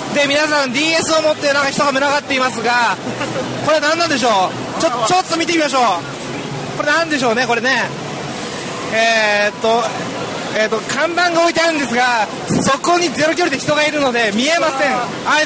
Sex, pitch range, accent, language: male, 220-300 Hz, native, Japanese